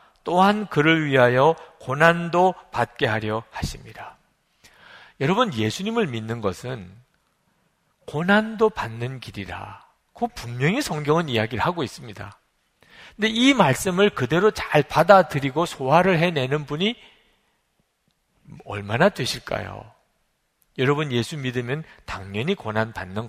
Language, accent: Korean, native